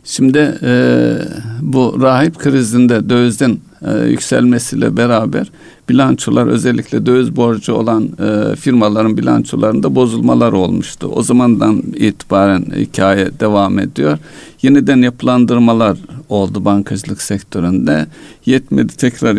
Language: Turkish